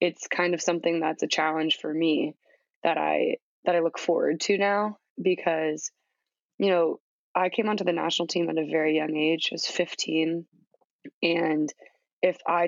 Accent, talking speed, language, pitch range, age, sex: American, 175 wpm, English, 160-175 Hz, 20-39, female